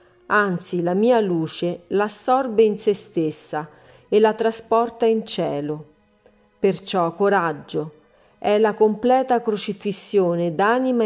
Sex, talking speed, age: female, 110 wpm, 40-59